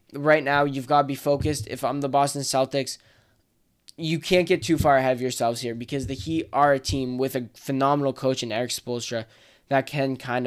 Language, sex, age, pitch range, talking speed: English, male, 10-29, 115-145 Hz, 210 wpm